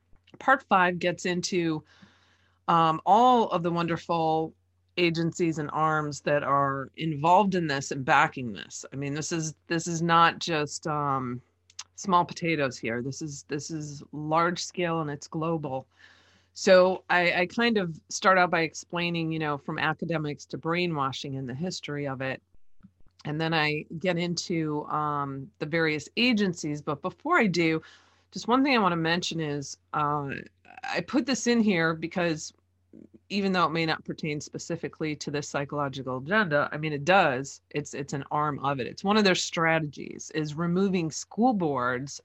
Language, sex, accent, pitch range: English, female, American, 145-175 Hz